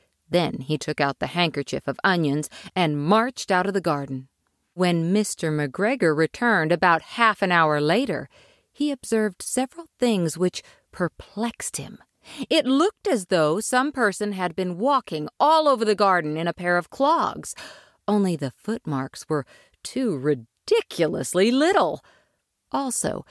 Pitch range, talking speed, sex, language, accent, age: 165-255 Hz, 145 wpm, female, English, American, 50-69